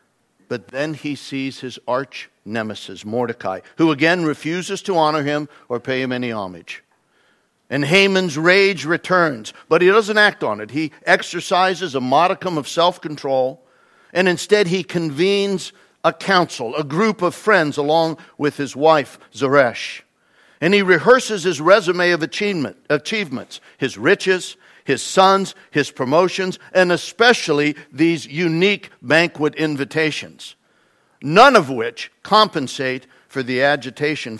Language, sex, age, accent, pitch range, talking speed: English, male, 60-79, American, 140-185 Hz, 135 wpm